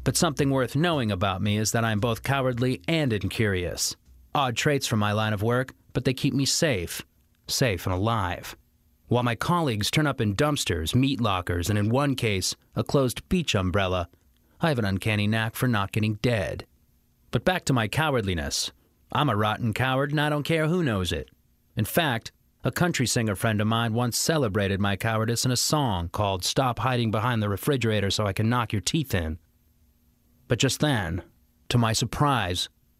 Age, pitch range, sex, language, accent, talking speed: 30-49, 95-130 Hz, male, English, American, 190 wpm